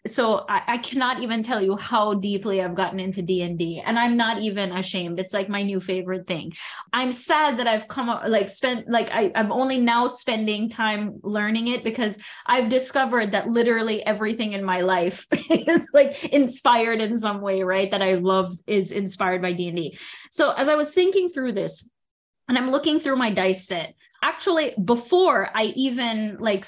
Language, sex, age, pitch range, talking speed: English, female, 20-39, 190-245 Hz, 195 wpm